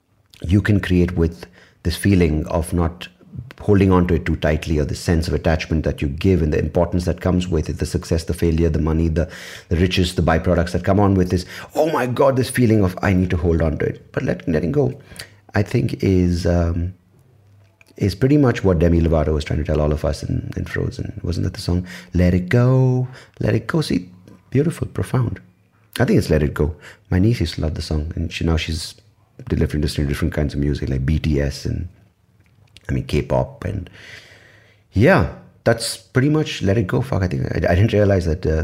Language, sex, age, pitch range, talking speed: English, male, 30-49, 85-110 Hz, 215 wpm